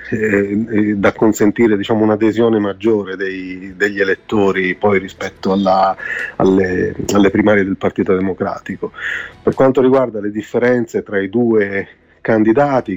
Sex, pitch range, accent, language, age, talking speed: male, 95-110 Hz, native, Italian, 30-49, 120 wpm